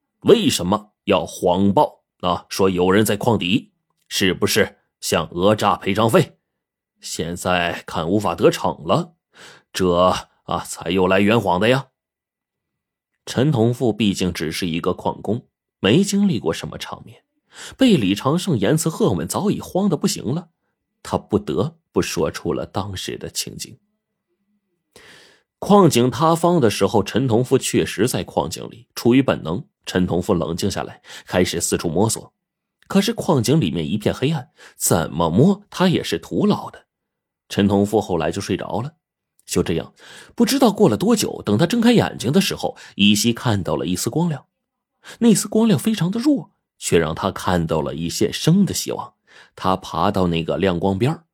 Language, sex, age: Chinese, male, 30-49